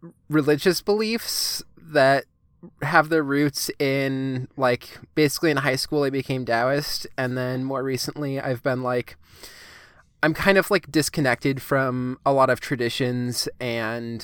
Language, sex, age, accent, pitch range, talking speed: English, male, 20-39, American, 115-145 Hz, 140 wpm